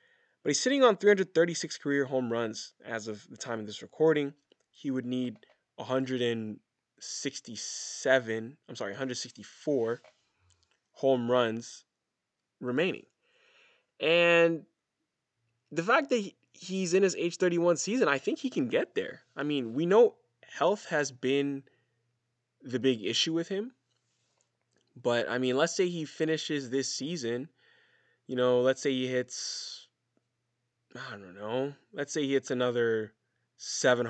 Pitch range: 120-170 Hz